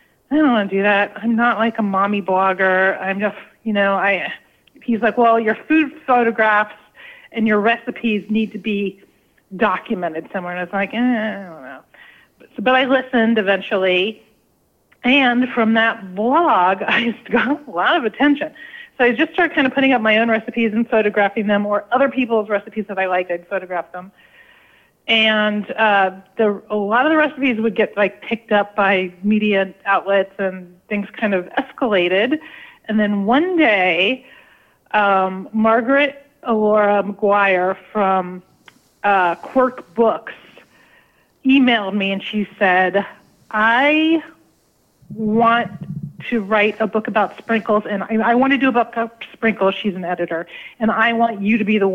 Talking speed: 170 wpm